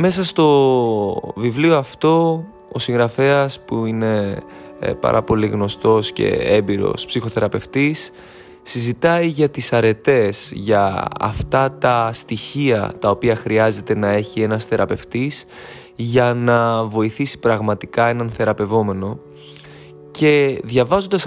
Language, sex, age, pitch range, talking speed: Greek, male, 20-39, 110-140 Hz, 105 wpm